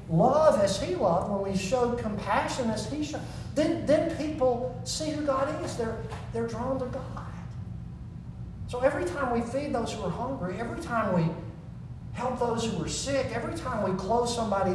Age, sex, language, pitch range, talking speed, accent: 50-69, male, English, 130-200 Hz, 185 wpm, American